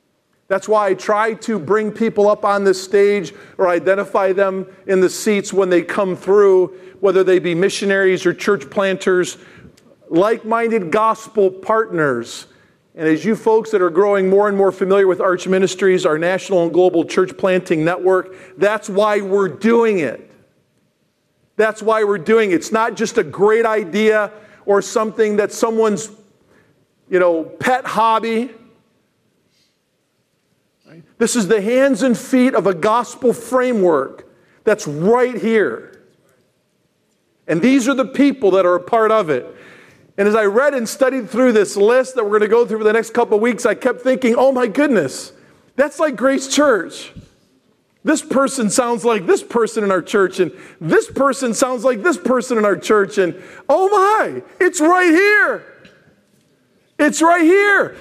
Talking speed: 165 wpm